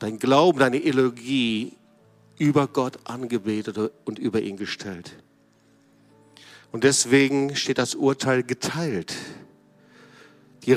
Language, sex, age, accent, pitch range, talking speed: German, male, 50-69, German, 110-165 Hz, 100 wpm